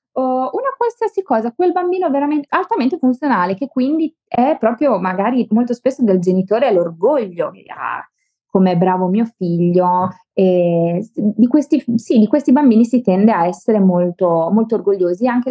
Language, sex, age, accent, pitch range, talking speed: Italian, female, 20-39, native, 190-240 Hz, 150 wpm